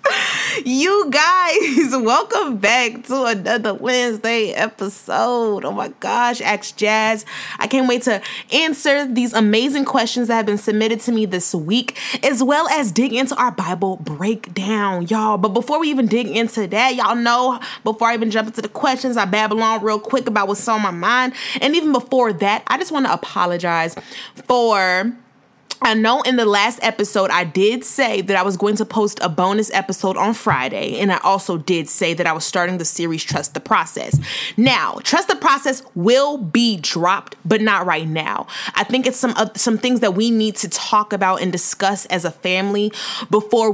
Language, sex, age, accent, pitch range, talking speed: English, female, 20-39, American, 190-235 Hz, 190 wpm